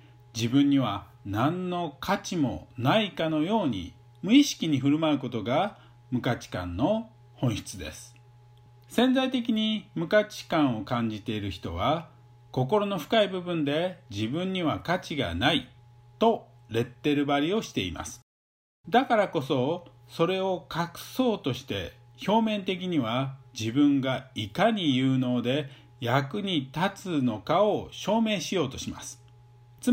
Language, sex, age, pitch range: Japanese, male, 50-69, 120-180 Hz